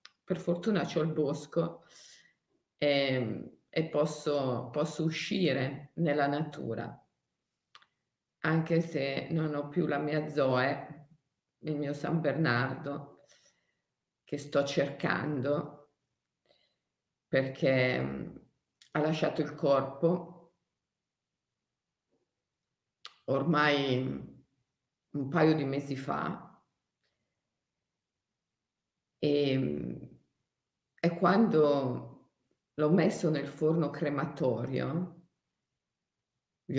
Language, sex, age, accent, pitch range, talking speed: Italian, female, 50-69, native, 145-190 Hz, 75 wpm